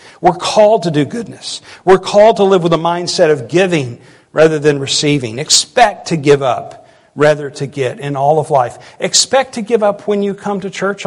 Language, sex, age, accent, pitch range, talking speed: English, male, 50-69, American, 140-185 Hz, 200 wpm